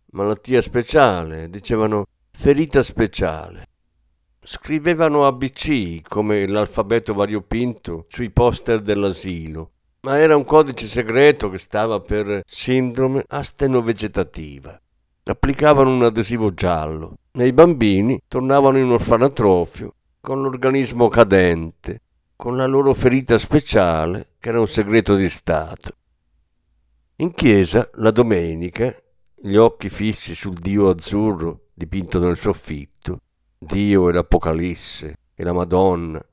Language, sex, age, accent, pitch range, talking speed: Italian, male, 50-69, native, 85-120 Hz, 105 wpm